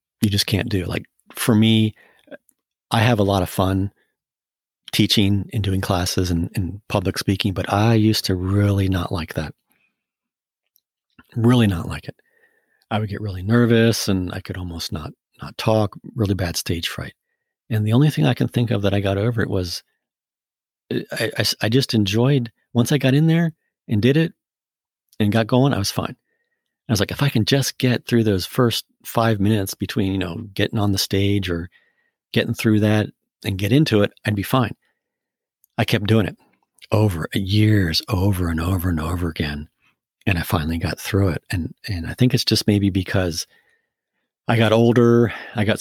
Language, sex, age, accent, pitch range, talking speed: English, male, 40-59, American, 95-115 Hz, 190 wpm